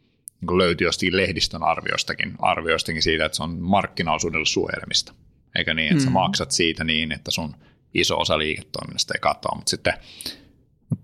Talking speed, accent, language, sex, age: 140 wpm, native, Finnish, male, 30-49